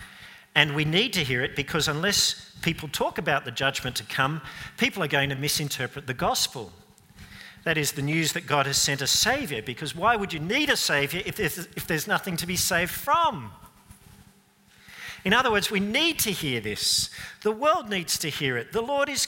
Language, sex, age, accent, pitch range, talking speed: English, male, 50-69, Australian, 135-185 Hz, 195 wpm